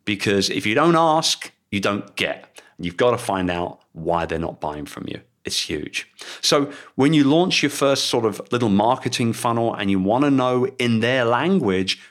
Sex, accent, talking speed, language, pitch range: male, British, 200 wpm, English, 95-125 Hz